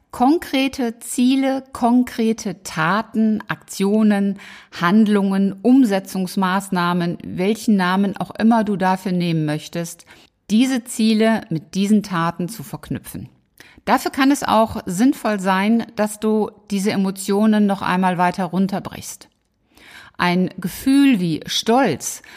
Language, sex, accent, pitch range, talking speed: German, female, German, 185-235 Hz, 105 wpm